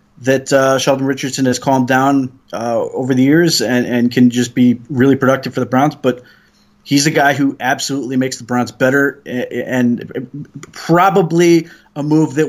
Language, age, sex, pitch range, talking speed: English, 30-49, male, 125-155 Hz, 175 wpm